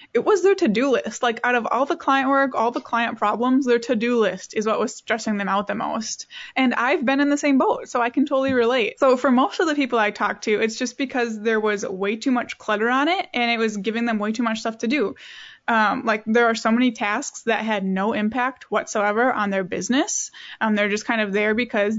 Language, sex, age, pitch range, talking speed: English, female, 20-39, 210-255 Hz, 250 wpm